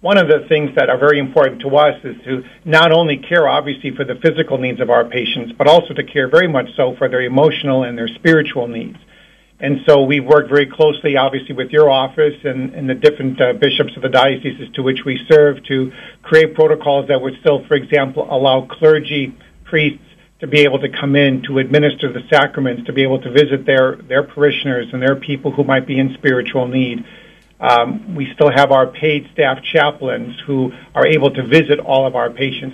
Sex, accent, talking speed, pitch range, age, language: male, American, 210 wpm, 130-150 Hz, 50-69, English